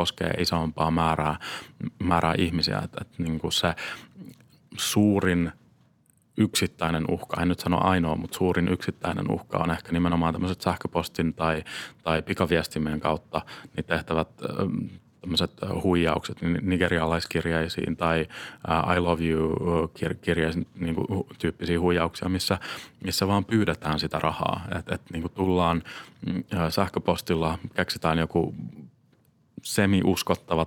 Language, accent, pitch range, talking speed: Finnish, native, 80-90 Hz, 110 wpm